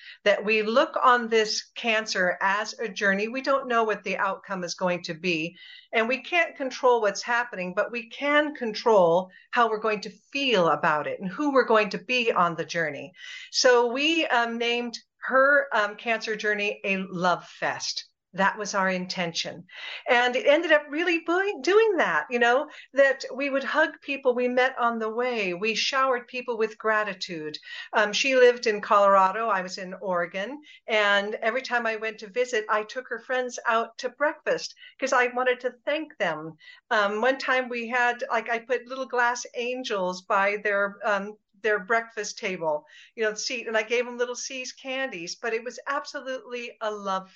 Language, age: English, 50-69